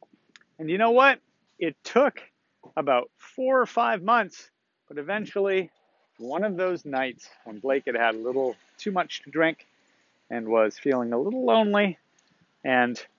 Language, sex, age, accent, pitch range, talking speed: English, male, 40-59, American, 160-230 Hz, 155 wpm